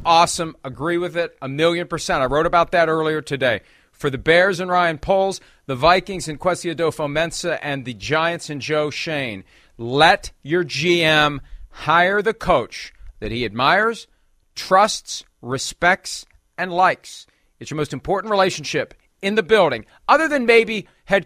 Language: English